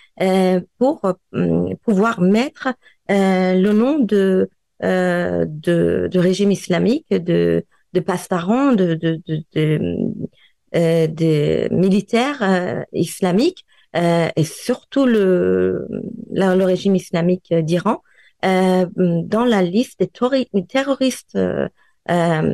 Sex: female